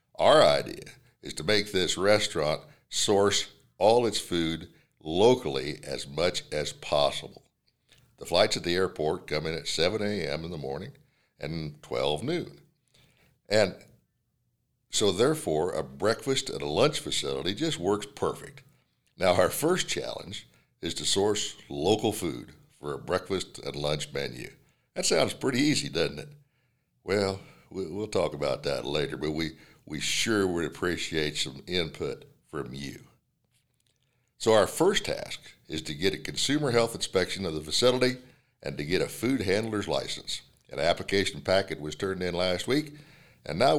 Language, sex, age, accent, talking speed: English, male, 60-79, American, 155 wpm